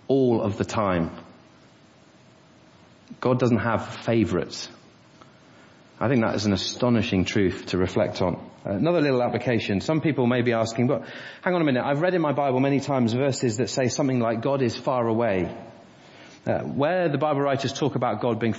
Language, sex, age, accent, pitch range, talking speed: English, male, 30-49, British, 105-130 Hz, 185 wpm